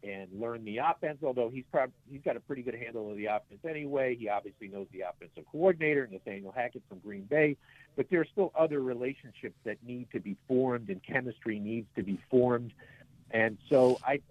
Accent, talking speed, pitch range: American, 200 wpm, 125-160 Hz